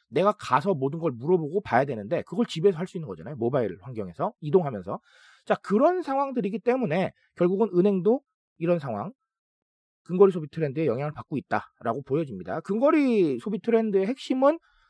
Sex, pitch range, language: male, 140-215 Hz, Korean